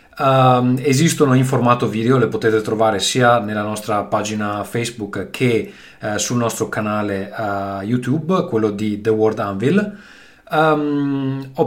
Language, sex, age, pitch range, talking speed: Italian, male, 30-49, 105-130 Hz, 120 wpm